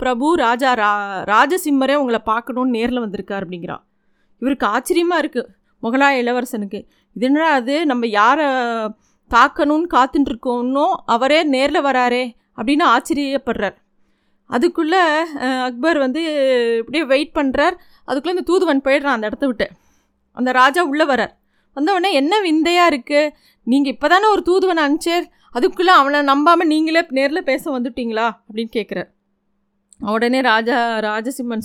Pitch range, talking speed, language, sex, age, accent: 230-300 Hz, 120 wpm, Tamil, female, 30-49, native